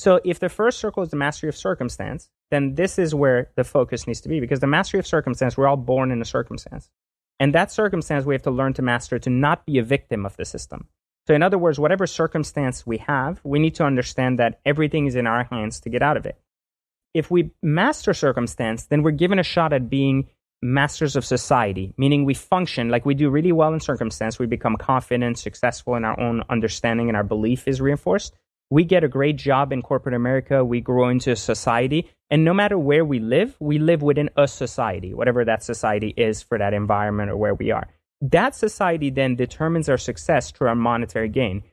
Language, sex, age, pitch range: English, male, 30-49, 115-150 Hz